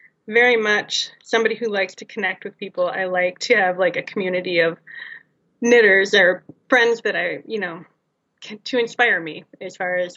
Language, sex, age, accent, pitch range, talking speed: English, female, 20-39, American, 180-220 Hz, 185 wpm